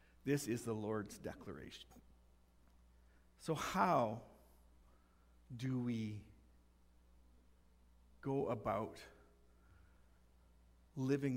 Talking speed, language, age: 65 wpm, English, 50-69